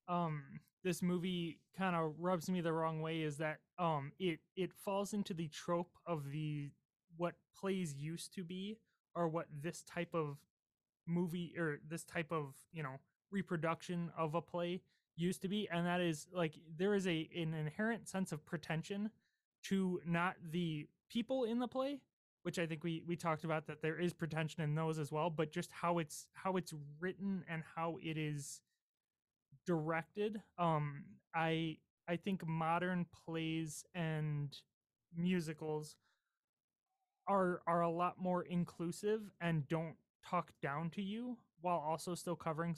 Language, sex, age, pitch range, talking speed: English, male, 20-39, 160-180 Hz, 160 wpm